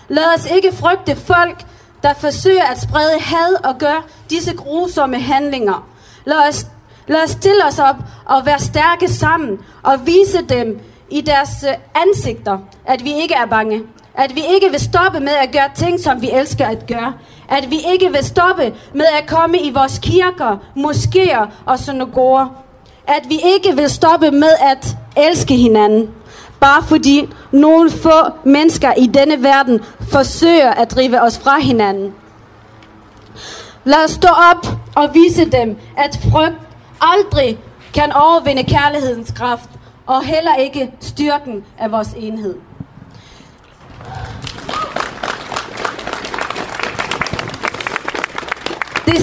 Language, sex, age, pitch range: Danish, female, 30-49, 255-325 Hz